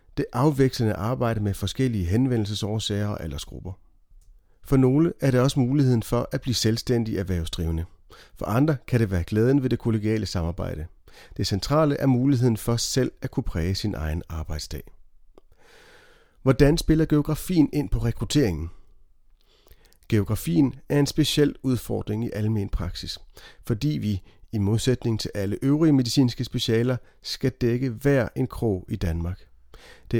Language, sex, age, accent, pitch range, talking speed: Danish, male, 40-59, native, 100-130 Hz, 145 wpm